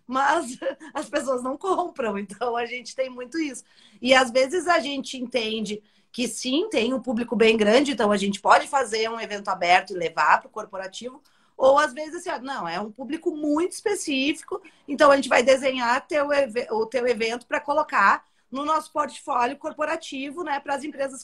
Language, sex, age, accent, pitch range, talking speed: Portuguese, female, 30-49, Brazilian, 210-275 Hz, 185 wpm